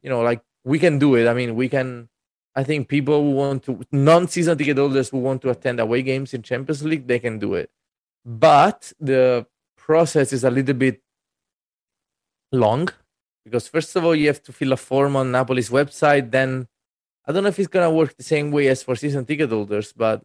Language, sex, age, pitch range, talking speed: English, male, 20-39, 120-140 Hz, 215 wpm